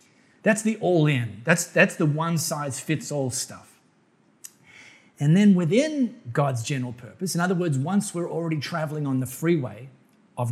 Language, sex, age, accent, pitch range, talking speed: English, male, 30-49, Australian, 135-170 Hz, 165 wpm